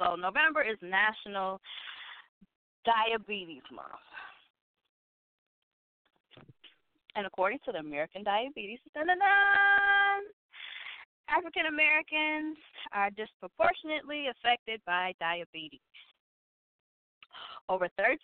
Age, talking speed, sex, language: 20-39, 70 wpm, female, English